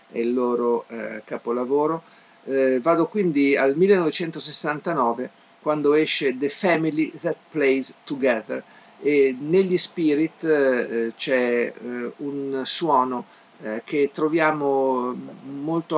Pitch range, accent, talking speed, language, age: 125-155 Hz, native, 100 wpm, Italian, 50-69